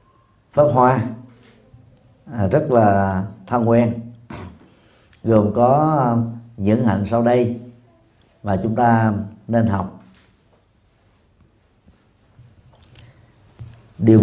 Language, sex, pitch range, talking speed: Vietnamese, male, 105-125 Hz, 75 wpm